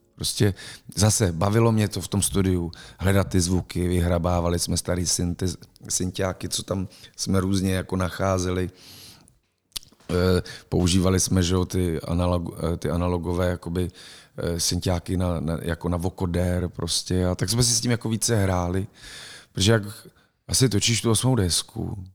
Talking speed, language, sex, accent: 140 wpm, Czech, male, native